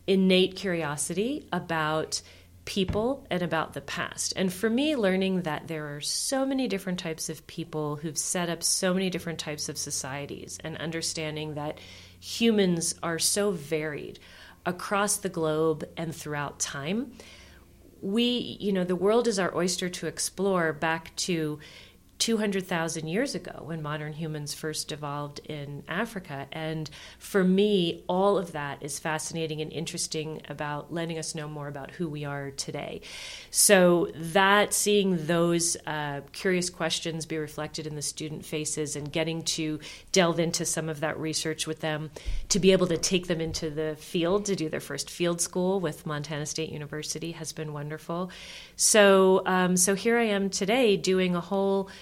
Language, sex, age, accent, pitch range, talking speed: English, female, 40-59, American, 150-190 Hz, 165 wpm